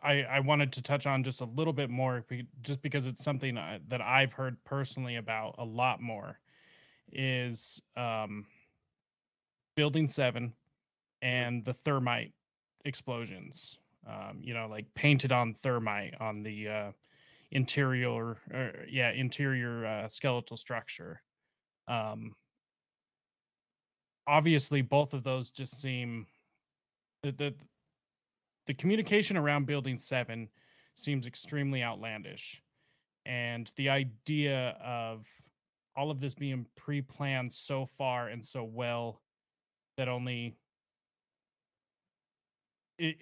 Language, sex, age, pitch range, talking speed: English, male, 20-39, 120-140 Hz, 115 wpm